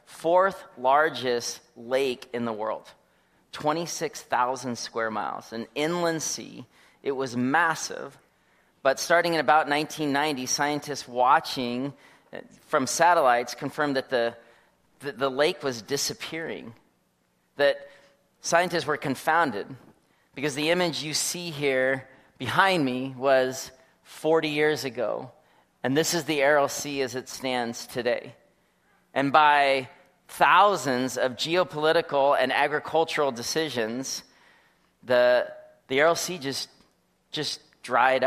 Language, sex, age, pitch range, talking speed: English, male, 30-49, 130-155 Hz, 115 wpm